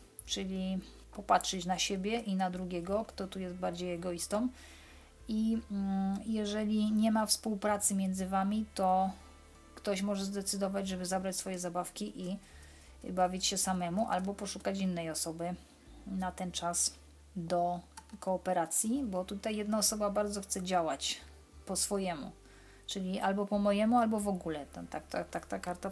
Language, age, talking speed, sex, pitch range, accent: Polish, 30-49, 135 wpm, female, 180-205 Hz, native